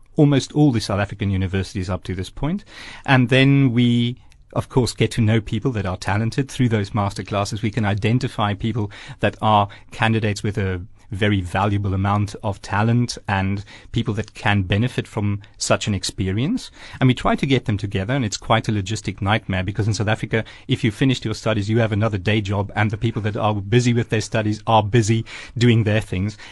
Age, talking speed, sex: 40-59, 205 wpm, male